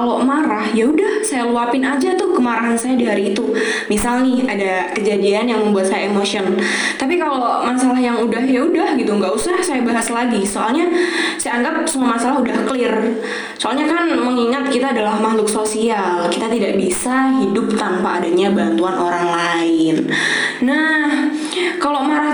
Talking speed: 155 wpm